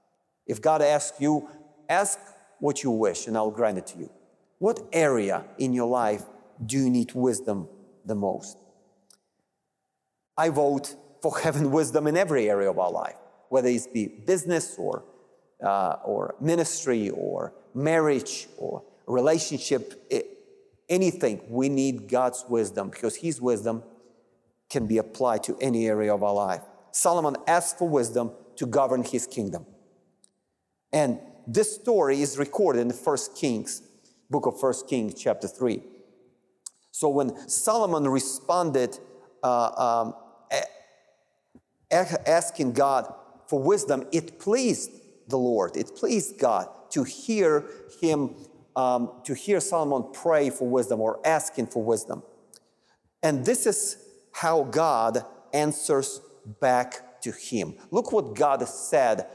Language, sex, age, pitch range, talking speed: English, male, 40-59, 120-160 Hz, 130 wpm